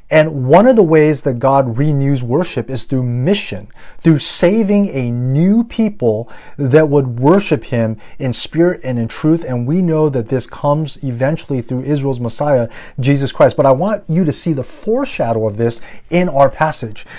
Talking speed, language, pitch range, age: 180 wpm, English, 130-175 Hz, 30-49